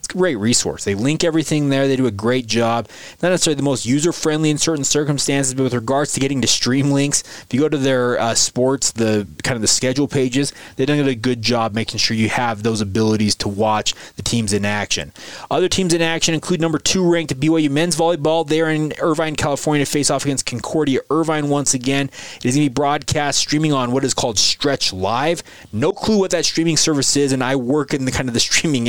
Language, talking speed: English, 225 wpm